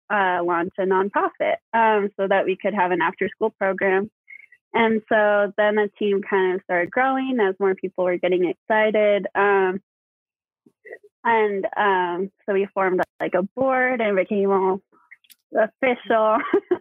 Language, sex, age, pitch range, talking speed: English, female, 20-39, 185-215 Hz, 145 wpm